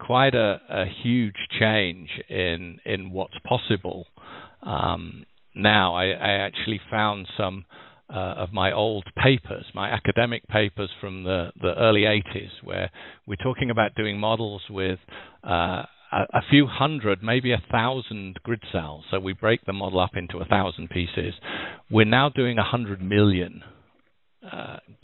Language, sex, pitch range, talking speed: English, male, 95-115 Hz, 150 wpm